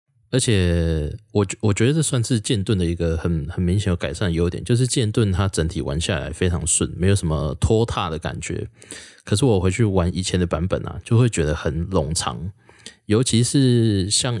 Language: Chinese